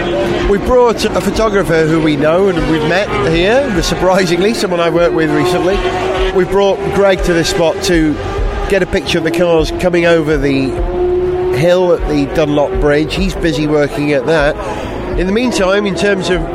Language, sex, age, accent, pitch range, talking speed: English, male, 30-49, British, 155-195 Hz, 180 wpm